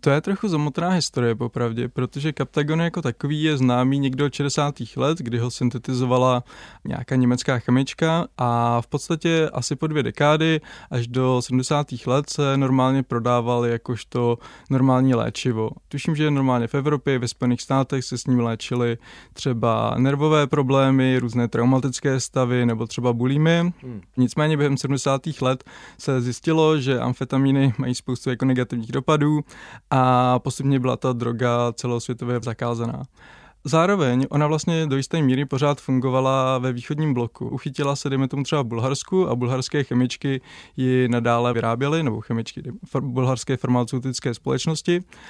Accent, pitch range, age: native, 125-145 Hz, 20-39